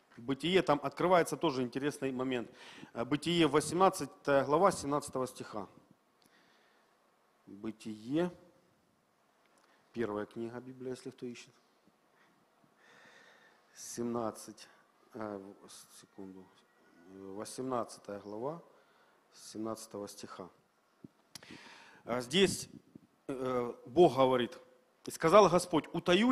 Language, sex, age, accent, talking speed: Russian, male, 40-59, native, 70 wpm